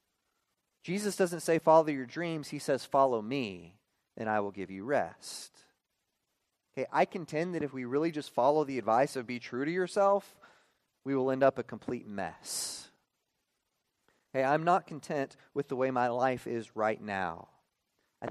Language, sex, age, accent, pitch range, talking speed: English, male, 30-49, American, 120-155 Hz, 170 wpm